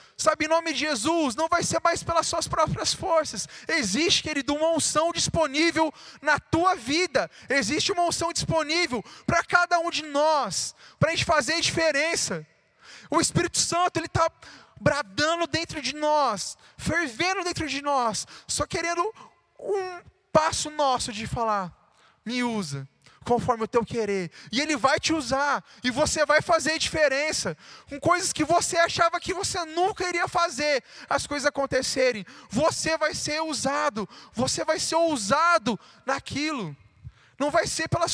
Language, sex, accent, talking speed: Portuguese, male, Brazilian, 155 wpm